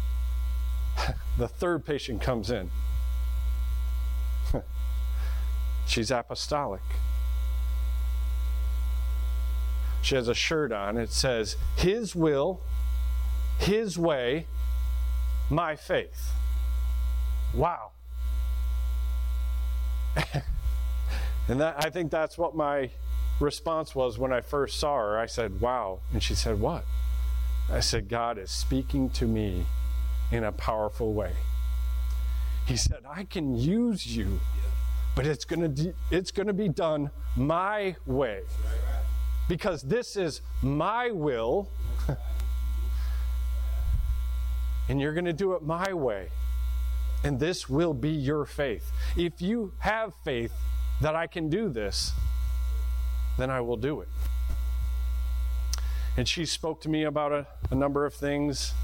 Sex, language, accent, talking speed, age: male, English, American, 115 wpm, 40-59